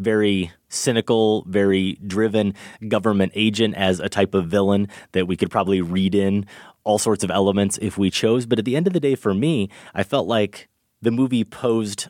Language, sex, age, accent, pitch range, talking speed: English, male, 30-49, American, 95-110 Hz, 195 wpm